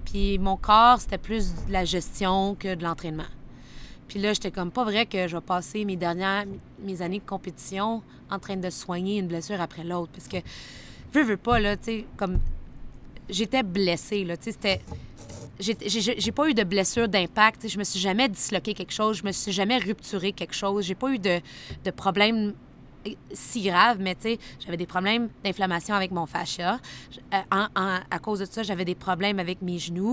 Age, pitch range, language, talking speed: 20-39, 180-215 Hz, French, 205 wpm